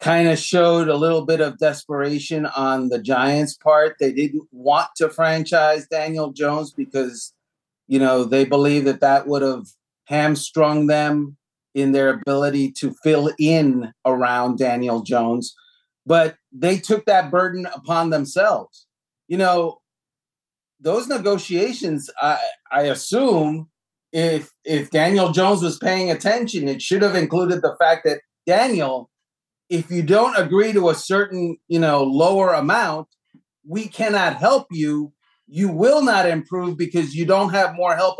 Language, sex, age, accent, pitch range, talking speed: English, male, 40-59, American, 145-180 Hz, 145 wpm